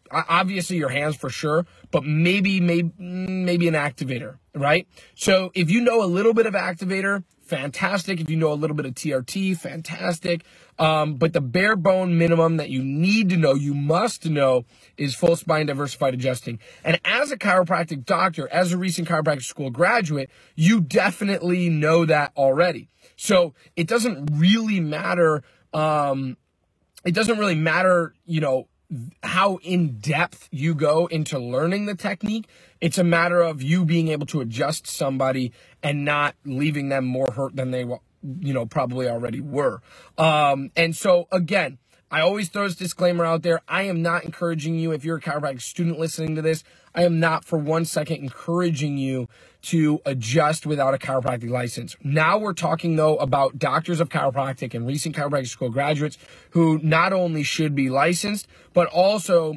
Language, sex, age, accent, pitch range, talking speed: English, male, 30-49, American, 140-175 Hz, 170 wpm